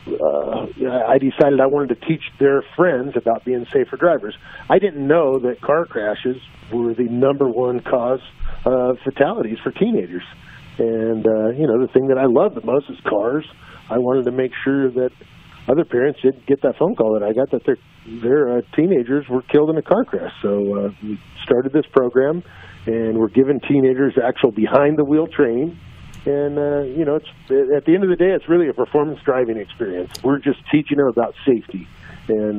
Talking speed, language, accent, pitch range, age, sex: 195 wpm, English, American, 120-145 Hz, 50-69, male